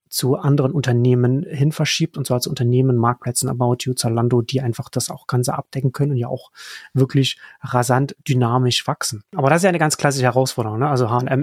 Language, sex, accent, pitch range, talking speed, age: German, male, German, 125-145 Hz, 200 wpm, 30-49